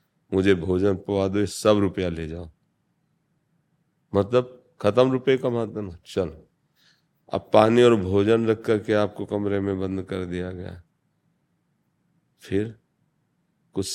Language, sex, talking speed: Hindi, male, 125 wpm